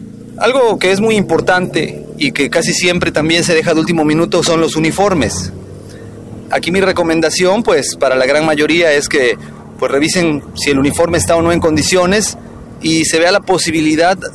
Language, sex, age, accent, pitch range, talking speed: Spanish, male, 30-49, Mexican, 145-180 Hz, 180 wpm